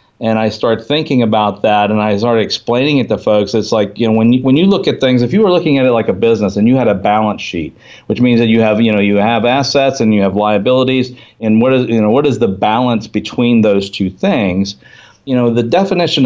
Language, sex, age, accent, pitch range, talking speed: English, male, 50-69, American, 115-135 Hz, 260 wpm